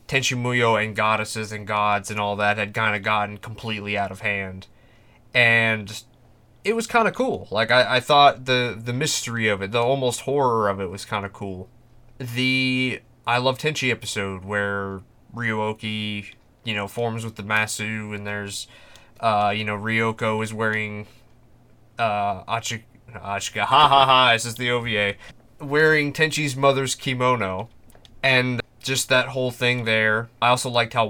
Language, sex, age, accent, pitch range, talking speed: English, male, 20-39, American, 110-130 Hz, 165 wpm